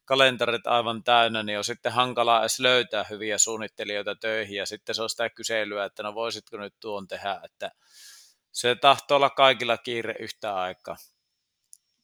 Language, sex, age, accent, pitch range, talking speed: Finnish, male, 30-49, native, 110-125 Hz, 160 wpm